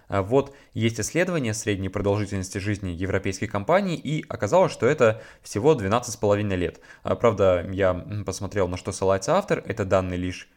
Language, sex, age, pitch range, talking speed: Russian, male, 20-39, 95-120 Hz, 140 wpm